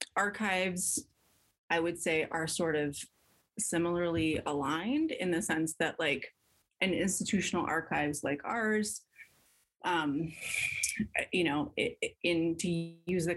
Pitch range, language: 150-175 Hz, English